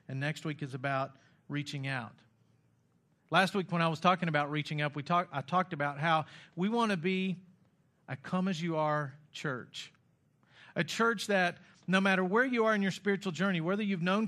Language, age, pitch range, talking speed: English, 50-69, 145-185 Hz, 180 wpm